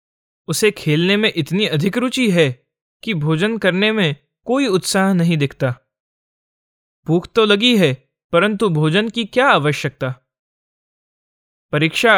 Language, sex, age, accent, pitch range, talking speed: Hindi, male, 20-39, native, 140-200 Hz, 125 wpm